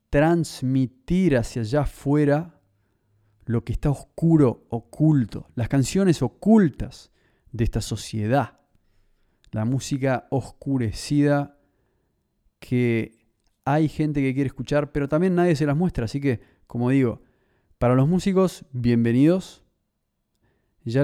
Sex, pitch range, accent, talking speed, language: male, 115-145 Hz, Argentinian, 110 wpm, Spanish